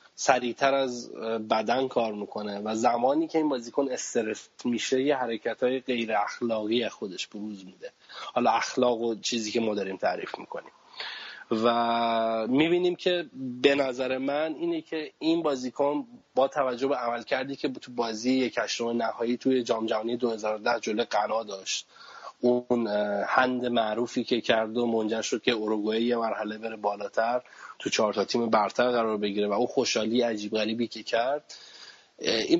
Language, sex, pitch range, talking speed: Persian, male, 110-135 Hz, 150 wpm